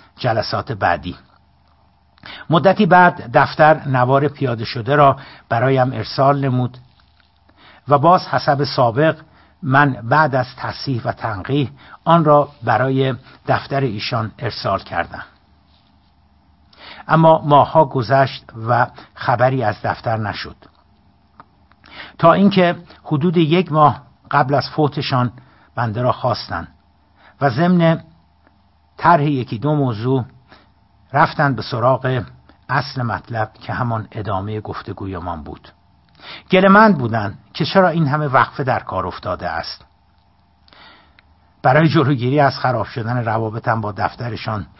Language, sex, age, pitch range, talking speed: Persian, male, 60-79, 100-140 Hz, 115 wpm